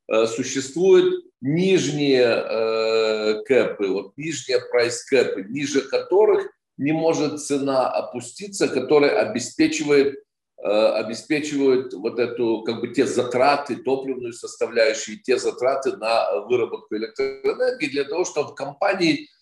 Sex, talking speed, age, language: male, 110 wpm, 50-69, Ukrainian